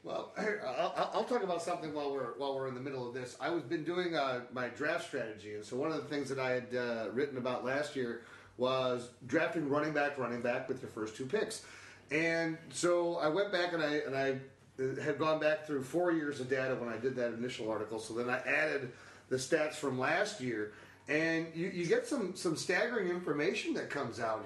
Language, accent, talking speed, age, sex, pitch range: English, American, 220 wpm, 40-59, male, 130-170 Hz